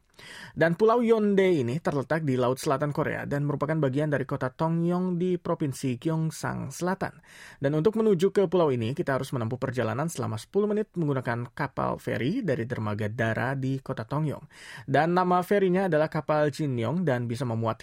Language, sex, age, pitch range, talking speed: English, male, 20-39, 130-180 Hz, 170 wpm